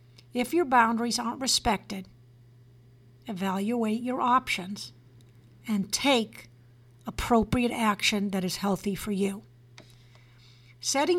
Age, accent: 50-69, American